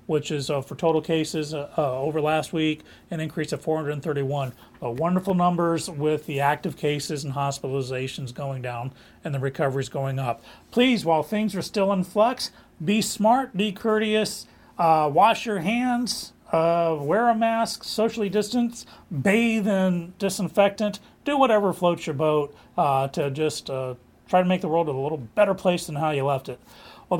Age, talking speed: 40-59, 175 wpm